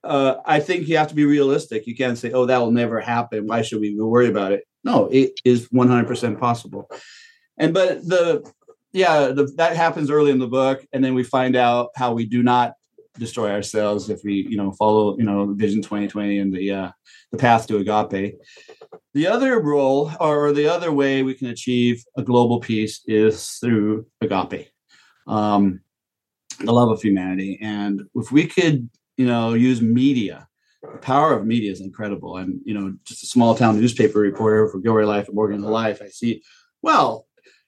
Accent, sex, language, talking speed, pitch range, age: American, male, English, 195 wpm, 110-145 Hz, 40-59